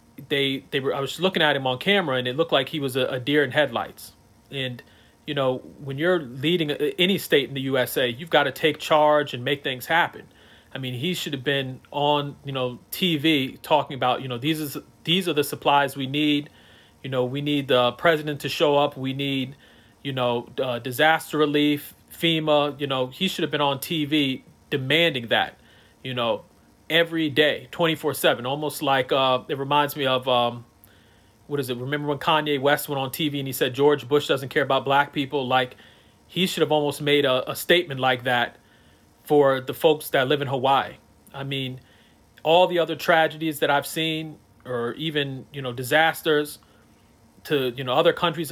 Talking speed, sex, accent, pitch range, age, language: 200 wpm, male, American, 130-155 Hz, 30-49, English